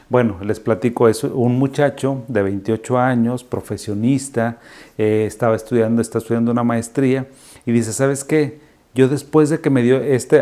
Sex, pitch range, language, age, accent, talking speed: male, 110-125 Hz, Spanish, 40-59, Mexican, 160 wpm